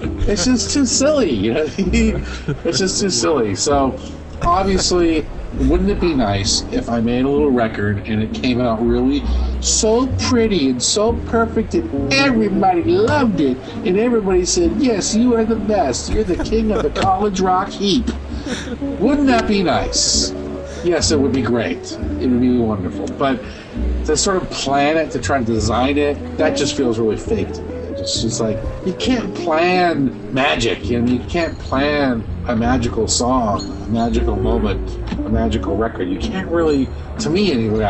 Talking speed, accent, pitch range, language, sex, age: 175 wpm, American, 110-180 Hz, English, male, 50-69